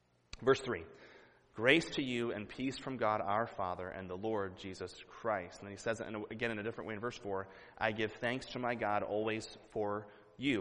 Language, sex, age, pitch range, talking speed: English, male, 30-49, 100-125 Hz, 215 wpm